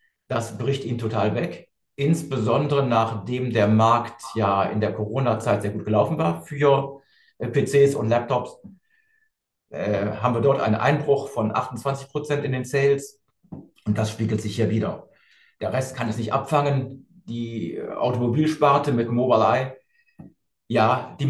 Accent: German